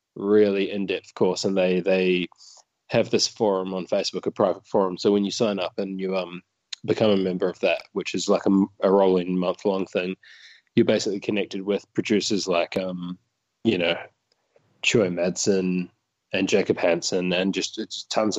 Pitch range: 90-105 Hz